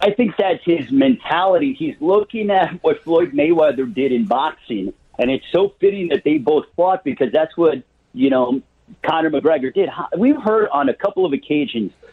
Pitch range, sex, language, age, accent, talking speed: 170-230 Hz, male, English, 50-69, American, 185 wpm